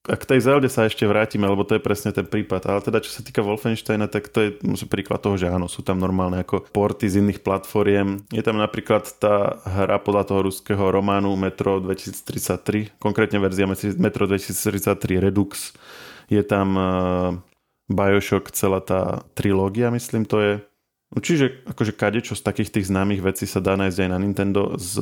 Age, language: 20-39, Slovak